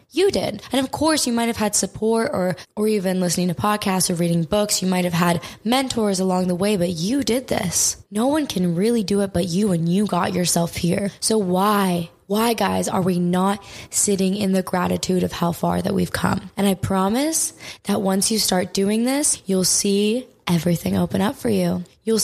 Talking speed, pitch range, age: 210 wpm, 180-210 Hz, 10-29